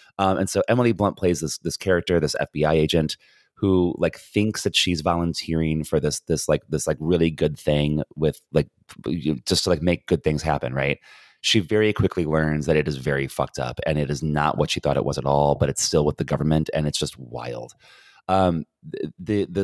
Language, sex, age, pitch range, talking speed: English, male, 30-49, 75-95 Hz, 215 wpm